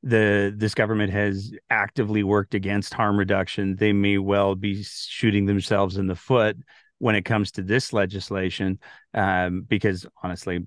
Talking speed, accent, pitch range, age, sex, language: 150 wpm, American, 95-120 Hz, 40-59, male, English